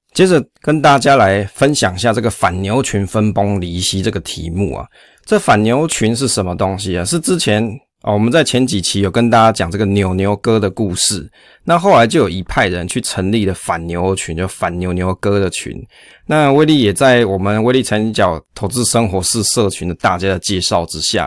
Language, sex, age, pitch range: Chinese, male, 20-39, 95-120 Hz